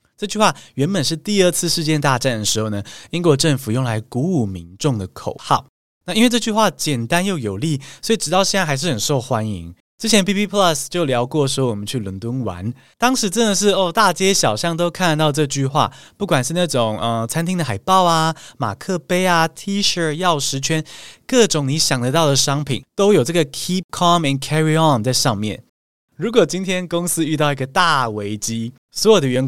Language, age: Chinese, 20-39